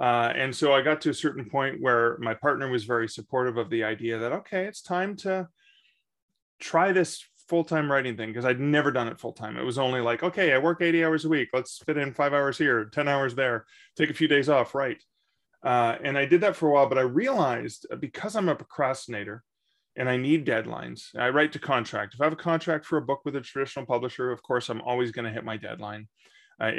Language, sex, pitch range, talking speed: English, male, 120-150 Hz, 235 wpm